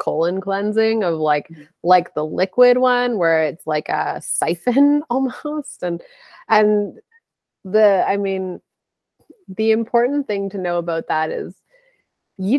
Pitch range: 170-225 Hz